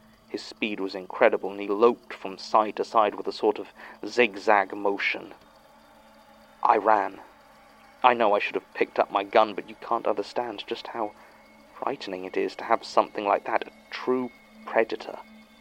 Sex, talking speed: male, 175 wpm